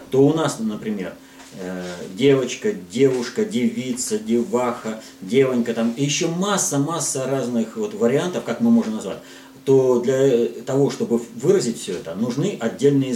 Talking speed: 130 wpm